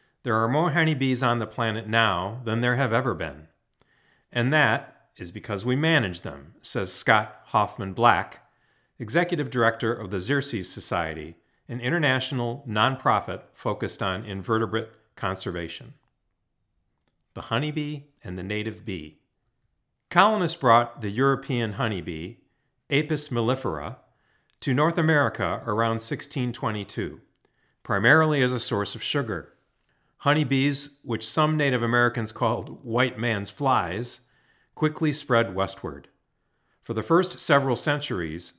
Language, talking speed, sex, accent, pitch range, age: English, 120 wpm, male, American, 110-140 Hz, 40-59